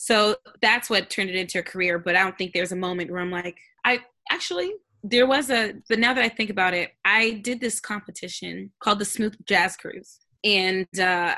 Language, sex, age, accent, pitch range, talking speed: English, female, 20-39, American, 180-220 Hz, 215 wpm